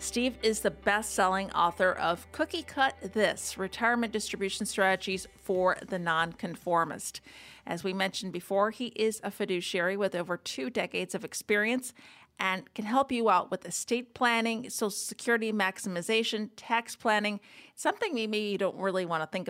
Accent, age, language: American, 50-69, English